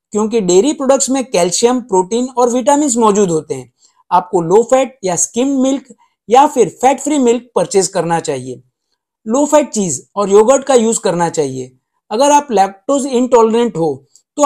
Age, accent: 50-69, native